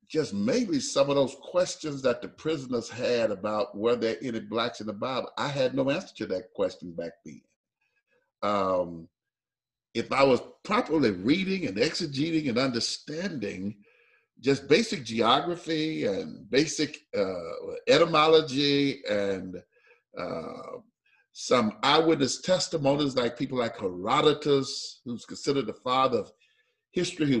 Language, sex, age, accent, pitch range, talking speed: English, male, 50-69, American, 120-175 Hz, 130 wpm